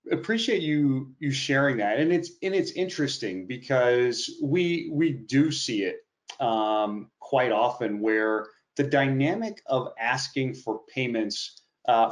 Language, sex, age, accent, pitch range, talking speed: English, male, 30-49, American, 115-145 Hz, 135 wpm